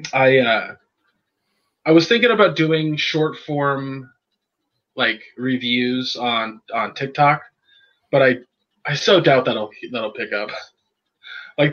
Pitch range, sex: 120-175 Hz, male